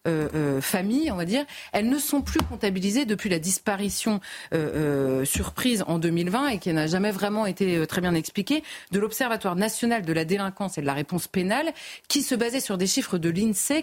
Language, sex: French, female